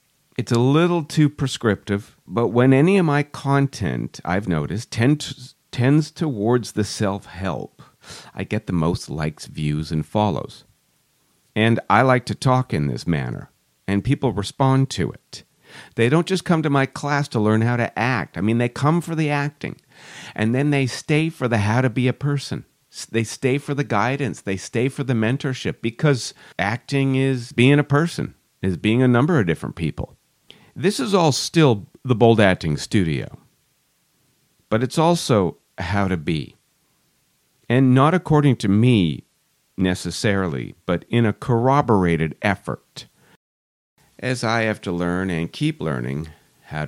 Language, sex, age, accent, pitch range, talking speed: English, male, 50-69, American, 90-140 Hz, 160 wpm